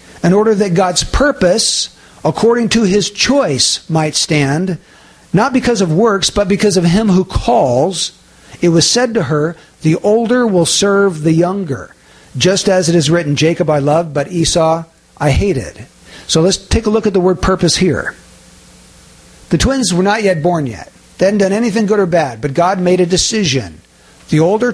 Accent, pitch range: American, 155-200 Hz